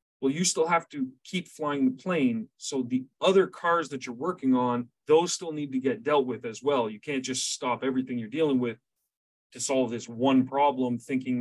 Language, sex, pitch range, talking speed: English, male, 125-150 Hz, 210 wpm